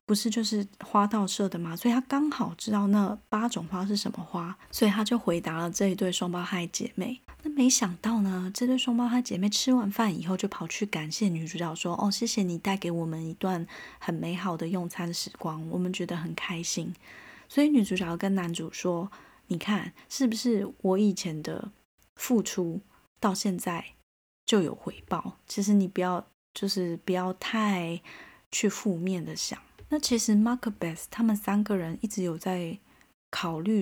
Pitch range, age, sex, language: 175-215 Hz, 20-39, female, Chinese